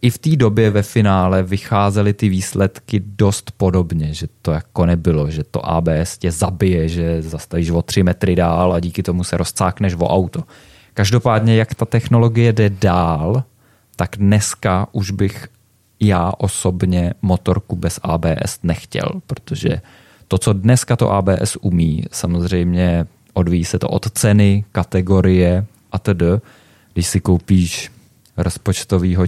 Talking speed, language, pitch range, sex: 140 wpm, Czech, 90-110 Hz, male